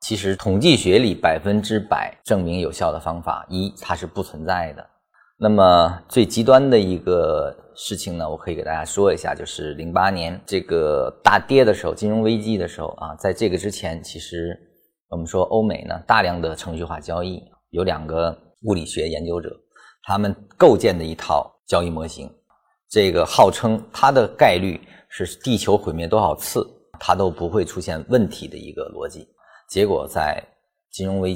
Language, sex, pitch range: Chinese, male, 85-110 Hz